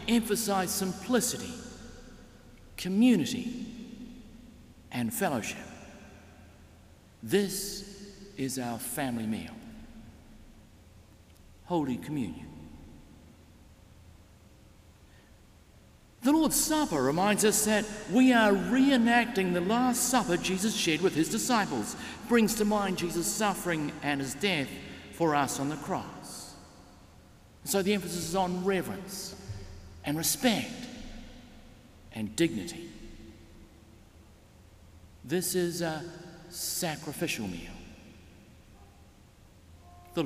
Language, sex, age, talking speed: English, male, 50-69, 85 wpm